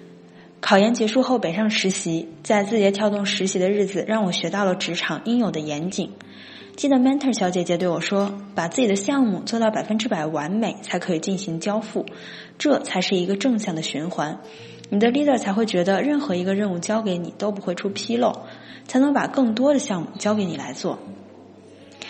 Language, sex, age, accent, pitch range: Chinese, female, 20-39, native, 175-225 Hz